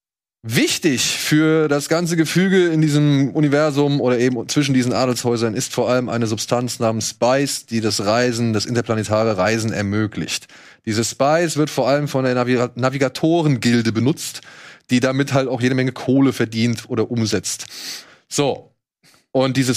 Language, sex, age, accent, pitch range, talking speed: German, male, 20-39, German, 120-145 Hz, 150 wpm